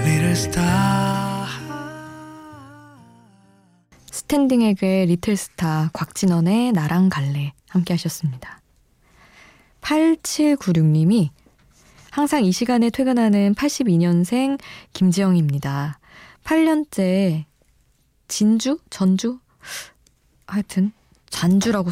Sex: female